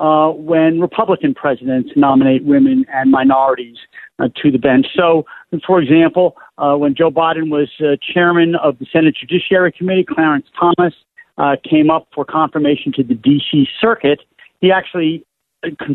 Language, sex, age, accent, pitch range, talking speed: English, male, 50-69, American, 145-200 Hz, 155 wpm